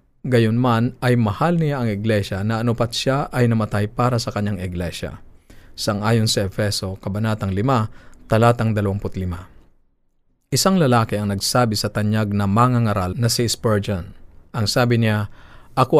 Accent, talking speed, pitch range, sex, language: native, 150 wpm, 100-125 Hz, male, Filipino